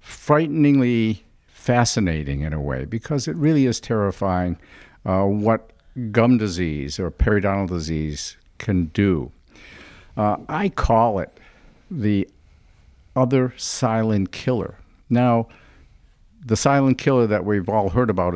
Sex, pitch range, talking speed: male, 90-120 Hz, 120 wpm